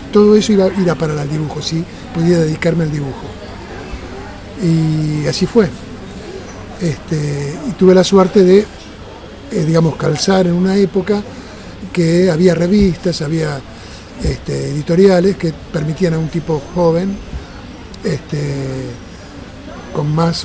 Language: Spanish